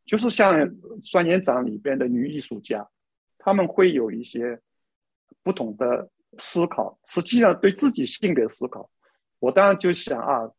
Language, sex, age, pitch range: Chinese, male, 50-69, 130-195 Hz